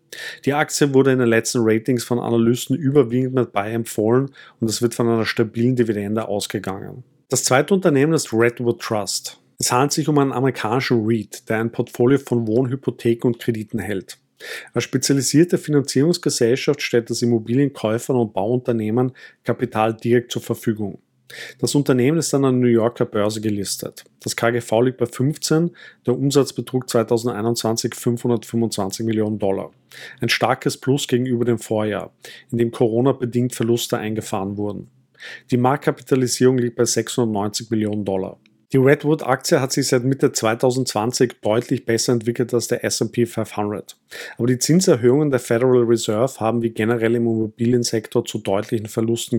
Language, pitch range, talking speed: German, 115-130 Hz, 150 wpm